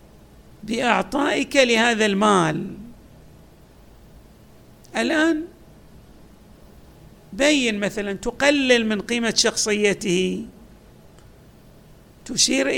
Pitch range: 205-270 Hz